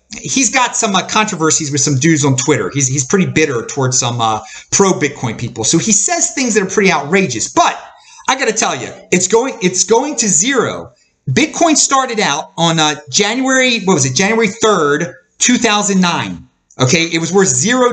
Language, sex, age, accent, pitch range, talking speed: English, male, 30-49, American, 165-250 Hz, 185 wpm